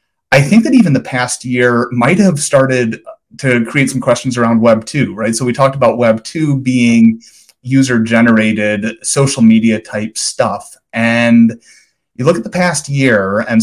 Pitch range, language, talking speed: 110-135 Hz, English, 165 wpm